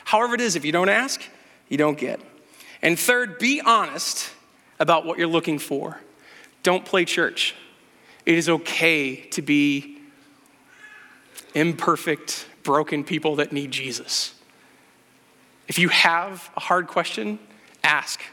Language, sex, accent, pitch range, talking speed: English, male, American, 155-205 Hz, 130 wpm